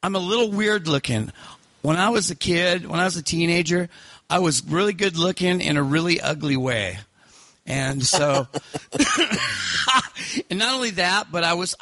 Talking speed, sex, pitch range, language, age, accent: 175 wpm, male, 125-170 Hz, English, 40-59, American